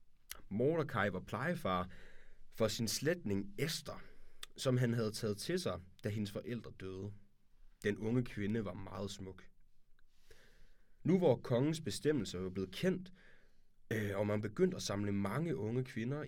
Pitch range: 100-130 Hz